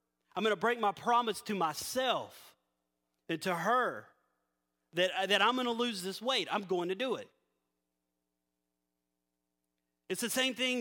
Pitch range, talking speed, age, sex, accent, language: 140-235 Hz, 155 wpm, 30-49, male, American, English